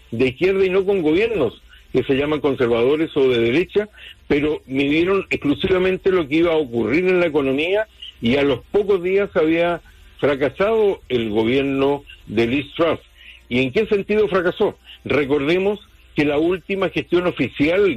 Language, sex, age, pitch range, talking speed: English, male, 50-69, 135-185 Hz, 155 wpm